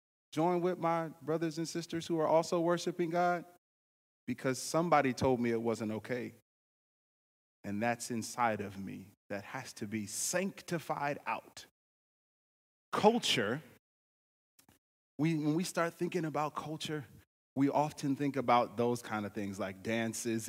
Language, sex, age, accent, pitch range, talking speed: English, male, 30-49, American, 125-160 Hz, 140 wpm